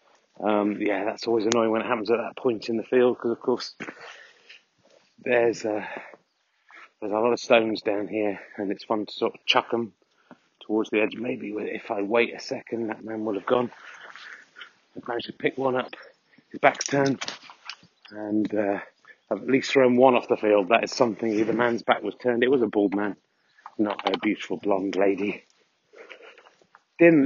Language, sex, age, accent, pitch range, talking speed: English, male, 30-49, British, 110-130 Hz, 190 wpm